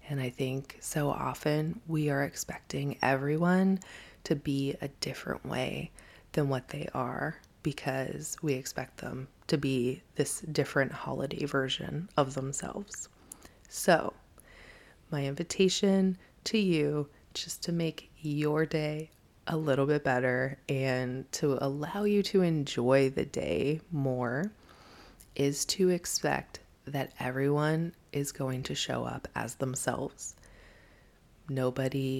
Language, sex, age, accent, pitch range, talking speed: English, female, 20-39, American, 130-150 Hz, 125 wpm